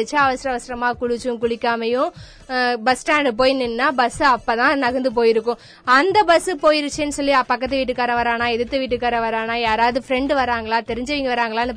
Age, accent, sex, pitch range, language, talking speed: 20-39, native, female, 240-280 Hz, Tamil, 50 wpm